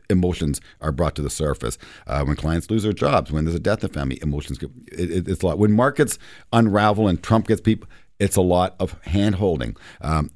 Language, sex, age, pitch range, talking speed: English, male, 50-69, 85-120 Hz, 220 wpm